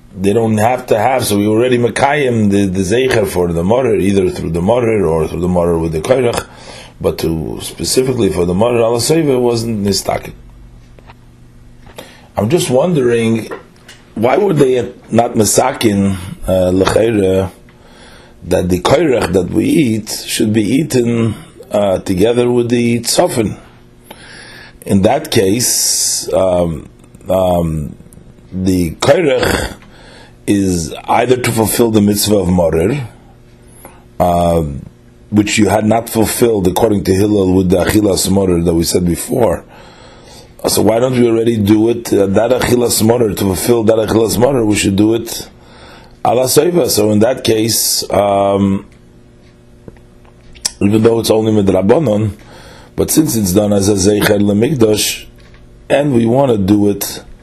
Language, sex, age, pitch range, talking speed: English, male, 40-59, 90-115 Hz, 140 wpm